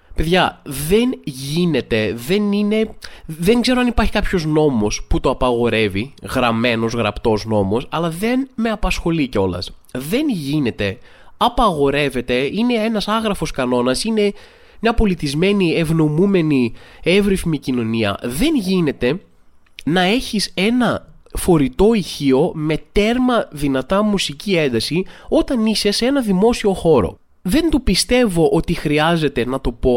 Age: 20-39